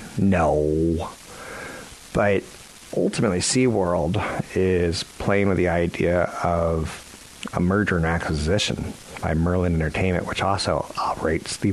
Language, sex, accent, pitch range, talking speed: English, male, American, 85-115 Hz, 105 wpm